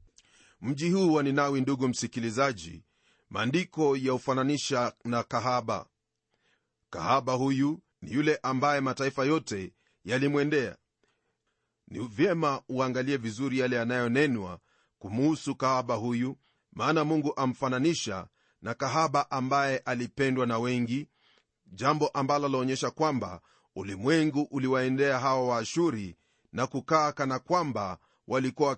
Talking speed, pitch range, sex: 100 wpm, 120-140 Hz, male